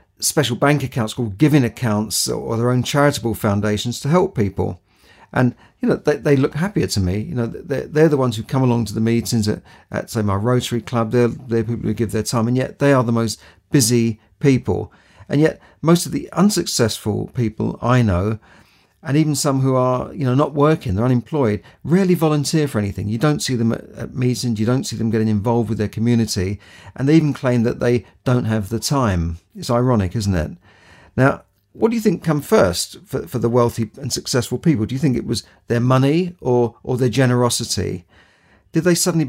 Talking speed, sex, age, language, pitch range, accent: 210 wpm, male, 50-69, English, 105-135 Hz, British